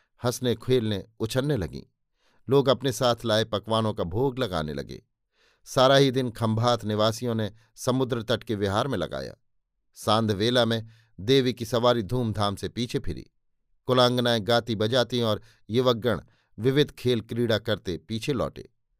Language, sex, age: Hindi, male, 50-69